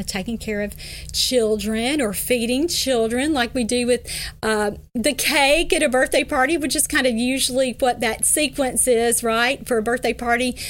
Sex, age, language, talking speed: female, 40-59, English, 180 wpm